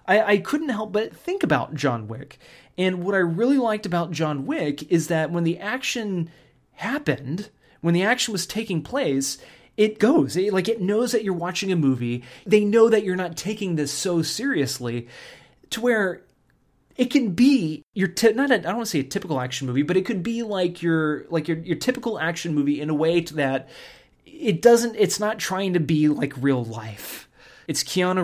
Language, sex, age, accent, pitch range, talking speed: English, male, 30-49, American, 145-205 Hz, 200 wpm